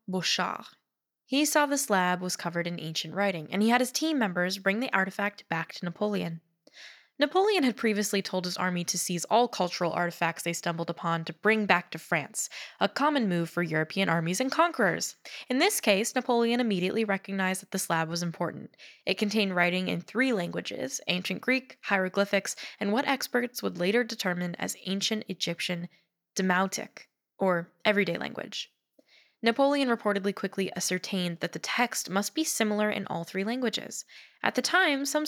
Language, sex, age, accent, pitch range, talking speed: English, female, 10-29, American, 180-235 Hz, 170 wpm